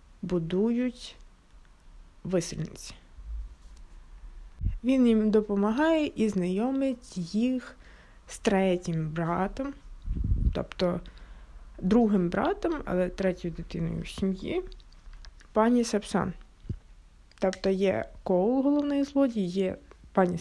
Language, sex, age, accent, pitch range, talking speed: Ukrainian, female, 20-39, native, 180-250 Hz, 85 wpm